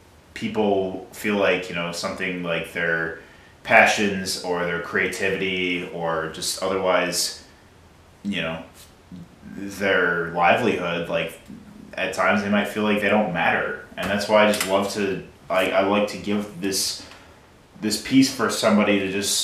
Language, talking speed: English, 150 wpm